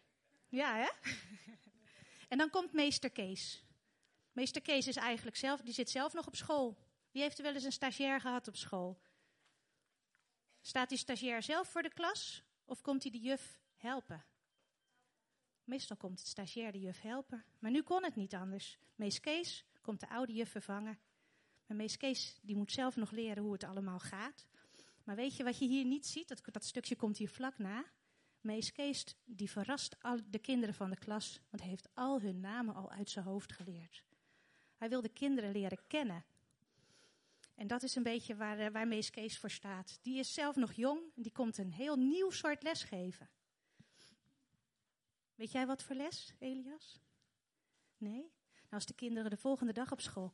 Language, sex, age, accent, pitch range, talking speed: Dutch, female, 30-49, Dutch, 210-270 Hz, 185 wpm